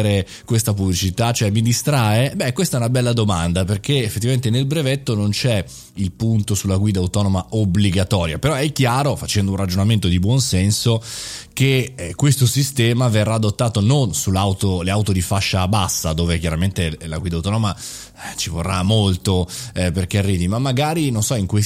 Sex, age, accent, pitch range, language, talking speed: male, 20-39, native, 95-125 Hz, Italian, 170 wpm